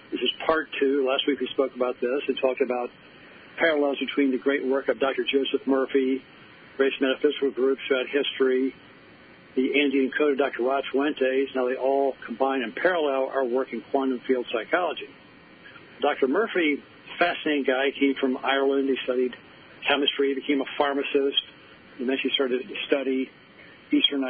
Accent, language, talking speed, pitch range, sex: American, English, 165 wpm, 125-140 Hz, male